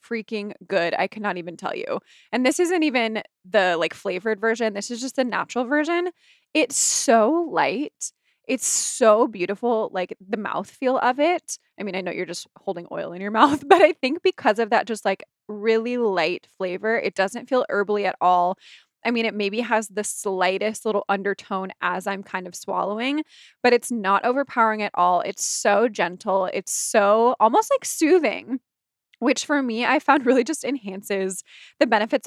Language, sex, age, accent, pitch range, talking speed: English, female, 20-39, American, 195-255 Hz, 180 wpm